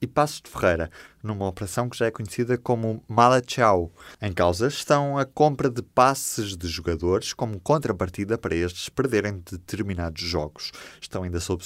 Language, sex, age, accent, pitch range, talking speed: Portuguese, male, 20-39, Brazilian, 90-125 Hz, 160 wpm